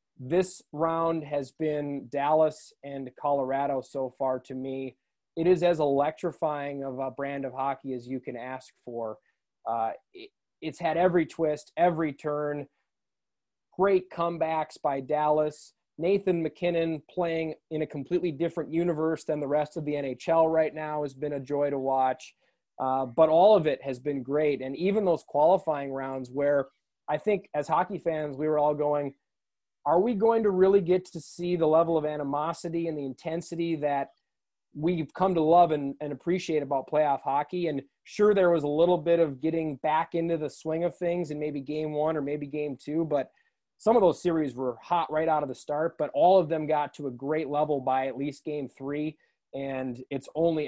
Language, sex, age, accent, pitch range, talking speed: English, male, 20-39, American, 140-165 Hz, 190 wpm